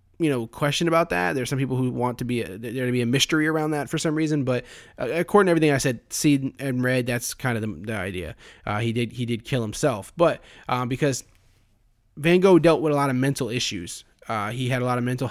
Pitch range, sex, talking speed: 115-145 Hz, male, 245 wpm